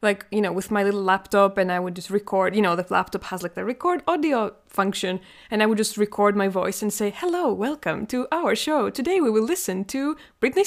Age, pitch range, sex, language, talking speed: 20-39, 195-260 Hz, female, English, 235 wpm